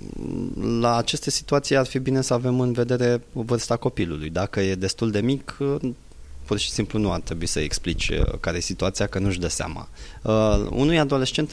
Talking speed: 180 wpm